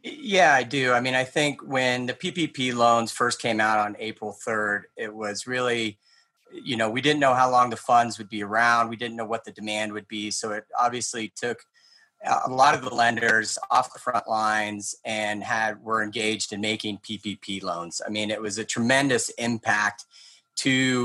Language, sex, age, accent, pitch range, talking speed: English, male, 30-49, American, 105-120 Hz, 195 wpm